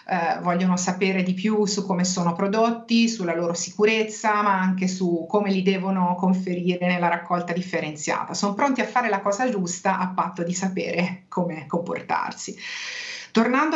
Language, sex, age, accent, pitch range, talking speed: Italian, female, 40-59, native, 185-225 Hz, 155 wpm